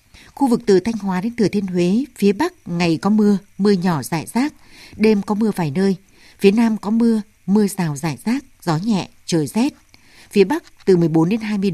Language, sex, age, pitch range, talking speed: Vietnamese, female, 60-79, 165-210 Hz, 210 wpm